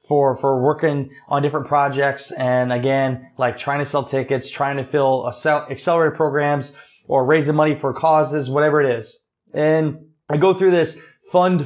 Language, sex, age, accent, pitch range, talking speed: English, male, 20-39, American, 135-160 Hz, 165 wpm